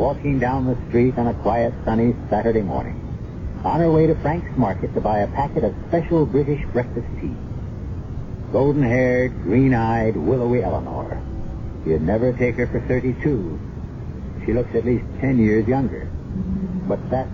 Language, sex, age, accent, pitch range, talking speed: English, male, 60-79, American, 100-130 Hz, 150 wpm